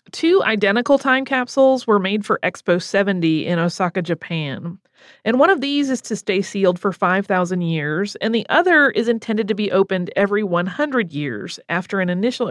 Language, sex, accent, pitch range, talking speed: English, female, American, 180-250 Hz, 180 wpm